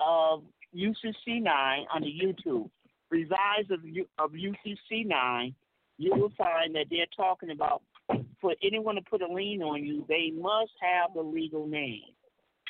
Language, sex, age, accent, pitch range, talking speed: English, male, 50-69, American, 160-210 Hz, 140 wpm